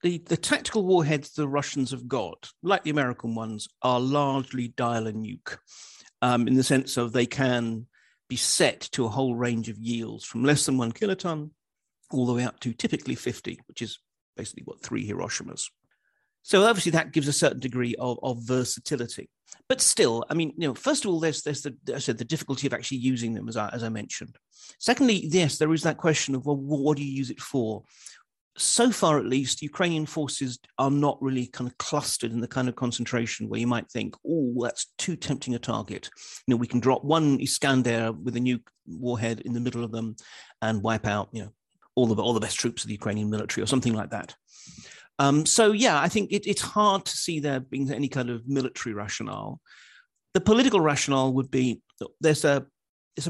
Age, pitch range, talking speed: 50-69, 120-150 Hz, 205 wpm